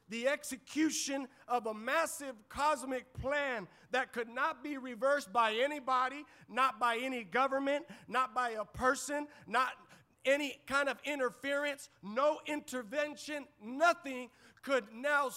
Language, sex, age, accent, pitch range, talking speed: English, male, 50-69, American, 220-285 Hz, 125 wpm